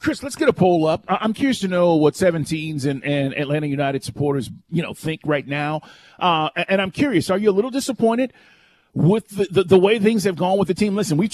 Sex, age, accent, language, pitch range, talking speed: male, 40-59, American, English, 165-225 Hz, 235 wpm